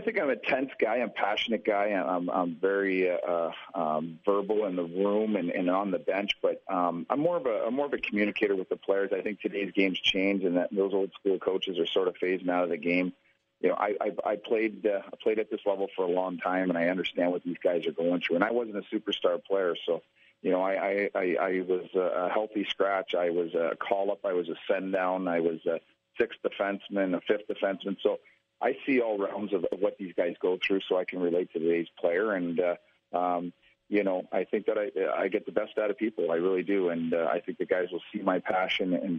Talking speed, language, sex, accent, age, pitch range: 255 wpm, English, male, American, 50-69, 90-105 Hz